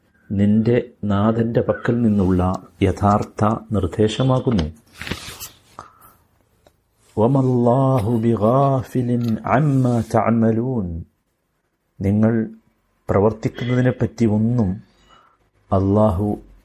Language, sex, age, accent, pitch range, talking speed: Malayalam, male, 60-79, native, 100-120 Hz, 50 wpm